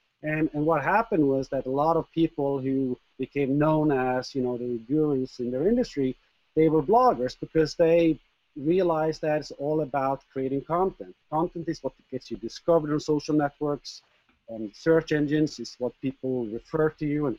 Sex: male